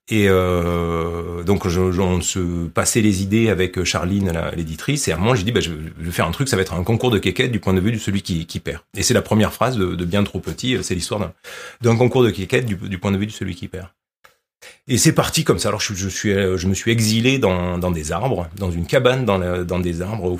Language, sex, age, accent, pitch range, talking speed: French, male, 30-49, French, 95-115 Hz, 250 wpm